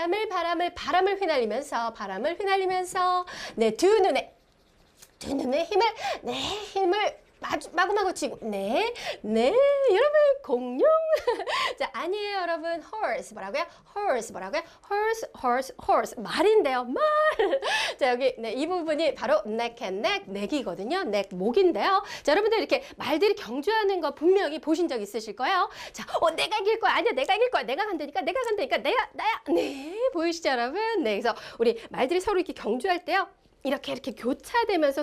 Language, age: Korean, 30-49